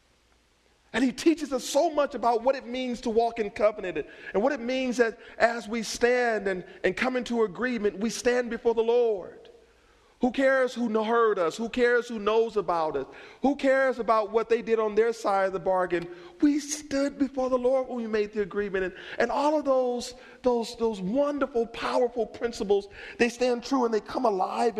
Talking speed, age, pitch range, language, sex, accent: 200 wpm, 40-59, 150-245 Hz, English, male, American